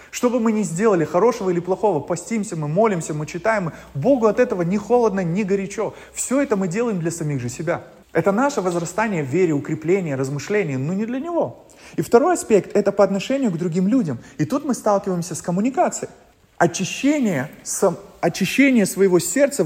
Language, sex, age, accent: Russian, male, 20-39, native